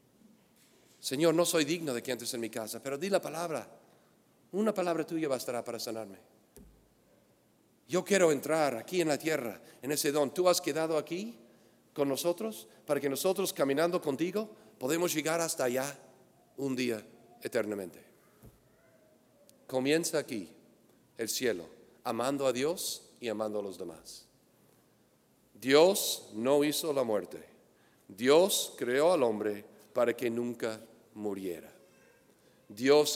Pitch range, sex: 120-160 Hz, male